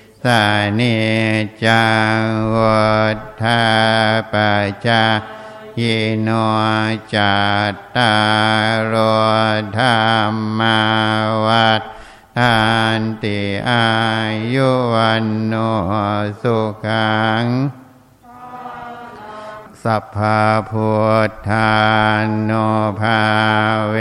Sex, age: male, 60-79